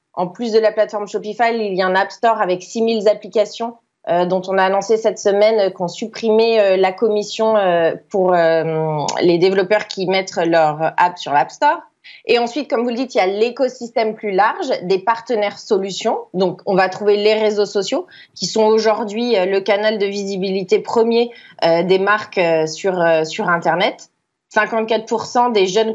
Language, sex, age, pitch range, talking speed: French, female, 20-39, 185-225 Hz, 185 wpm